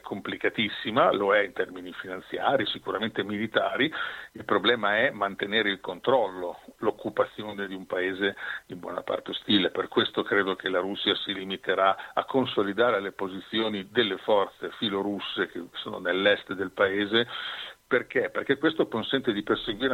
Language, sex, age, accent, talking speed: Italian, male, 50-69, native, 145 wpm